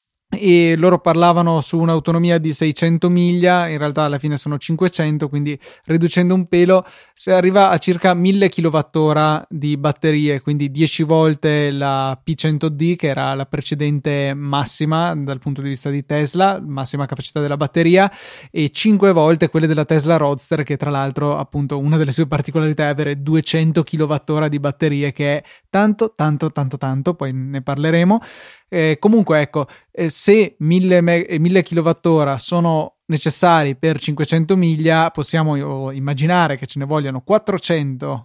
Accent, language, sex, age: native, Italian, male, 20-39